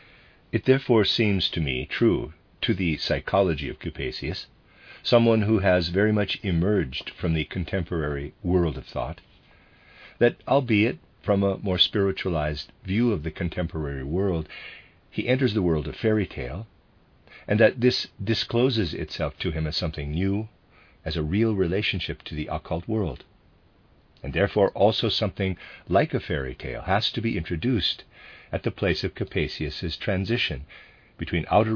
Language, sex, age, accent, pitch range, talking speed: English, male, 50-69, American, 80-110 Hz, 150 wpm